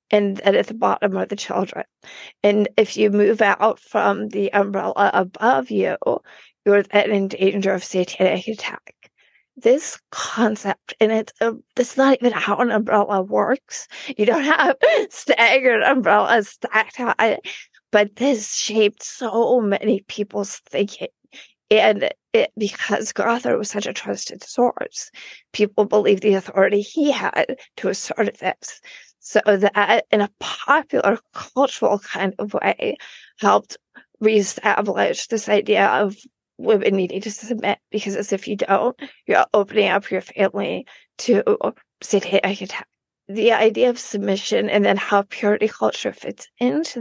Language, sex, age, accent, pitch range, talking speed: English, female, 40-59, American, 200-245 Hz, 145 wpm